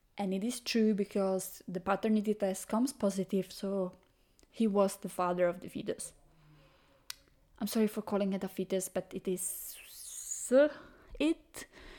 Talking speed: 145 wpm